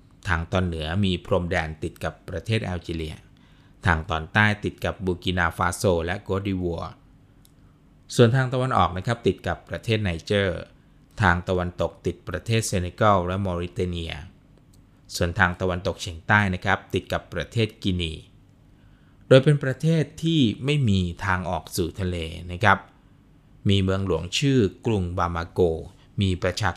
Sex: male